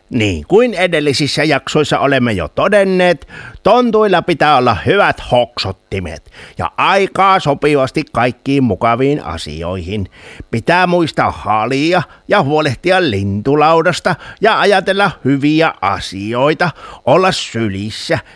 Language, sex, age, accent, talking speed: Finnish, male, 60-79, native, 100 wpm